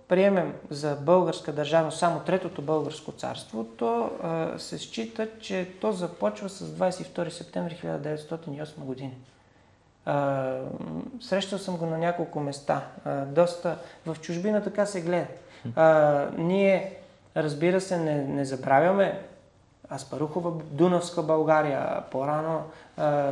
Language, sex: Bulgarian, male